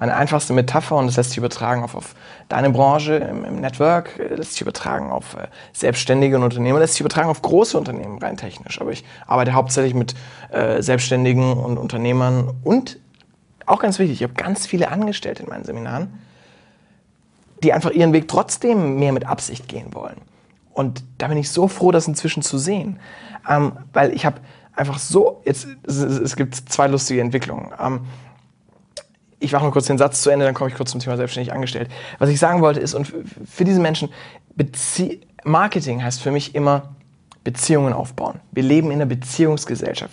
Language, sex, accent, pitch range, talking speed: German, male, German, 130-160 Hz, 180 wpm